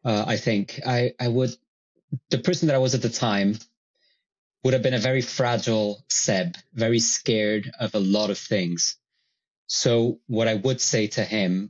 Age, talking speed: 20-39, 180 wpm